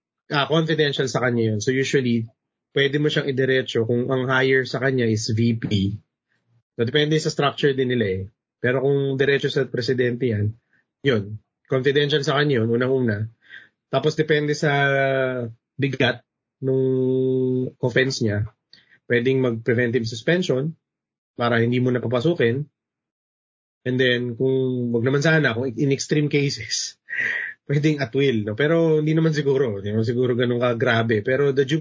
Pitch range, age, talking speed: 110-135 Hz, 20-39, 145 wpm